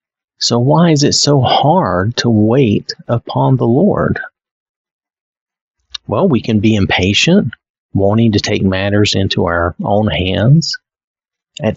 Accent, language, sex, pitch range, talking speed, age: American, English, male, 95-125 Hz, 125 wpm, 40-59